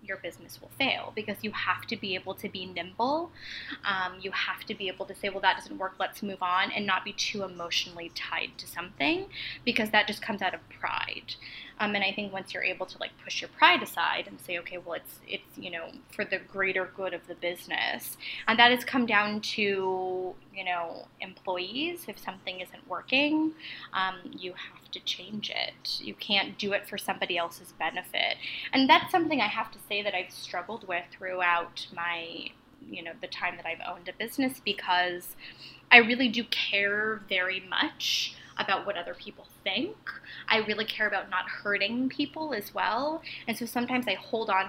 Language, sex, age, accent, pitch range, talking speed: English, female, 10-29, American, 185-220 Hz, 195 wpm